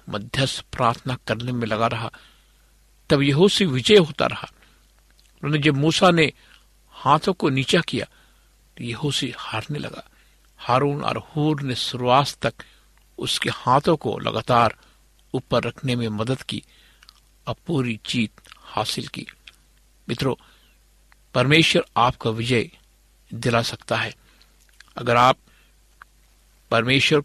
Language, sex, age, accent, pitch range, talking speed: Hindi, male, 60-79, native, 115-145 Hz, 100 wpm